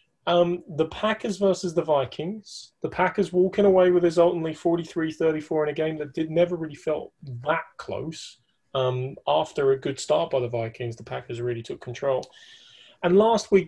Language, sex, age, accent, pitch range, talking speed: English, male, 30-49, British, 135-180 Hz, 175 wpm